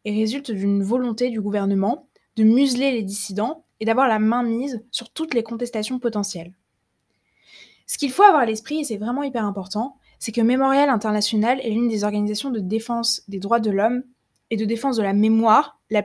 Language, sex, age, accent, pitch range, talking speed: French, female, 20-39, French, 205-245 Hz, 195 wpm